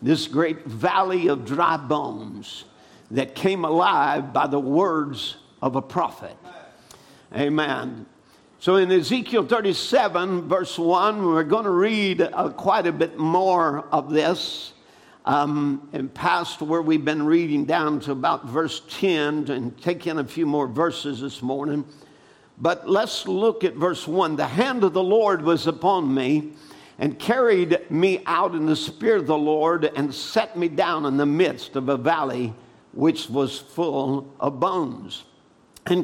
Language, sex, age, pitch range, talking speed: English, male, 60-79, 145-185 Hz, 155 wpm